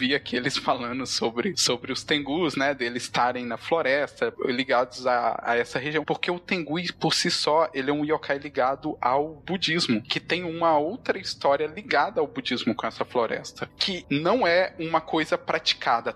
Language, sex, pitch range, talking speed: Portuguese, male, 140-175 Hz, 180 wpm